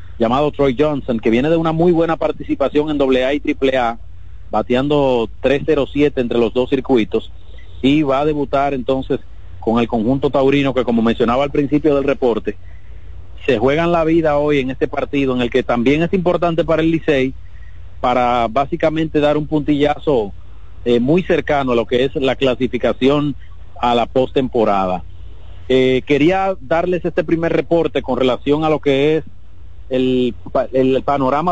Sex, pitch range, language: male, 115-150 Hz, Spanish